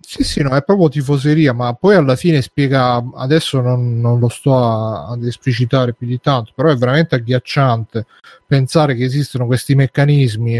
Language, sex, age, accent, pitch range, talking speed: Italian, male, 30-49, native, 120-140 Hz, 170 wpm